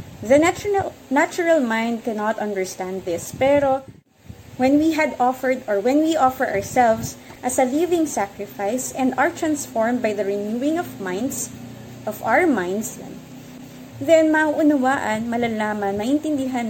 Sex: female